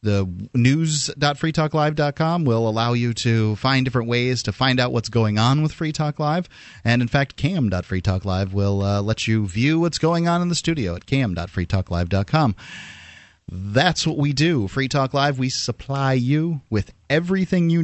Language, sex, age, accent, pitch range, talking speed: English, male, 30-49, American, 110-150 Hz, 165 wpm